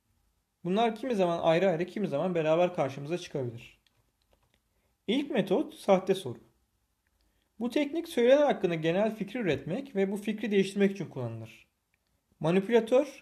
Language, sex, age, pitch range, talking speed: Turkish, male, 40-59, 135-220 Hz, 125 wpm